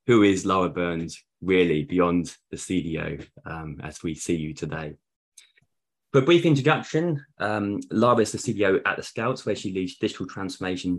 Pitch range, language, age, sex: 85-105 Hz, English, 20-39, male